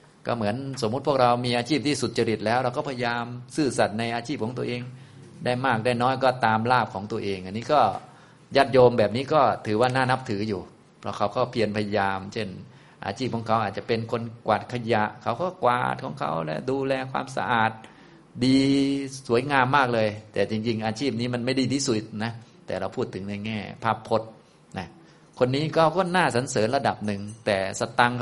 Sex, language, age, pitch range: male, Thai, 20-39, 105-130 Hz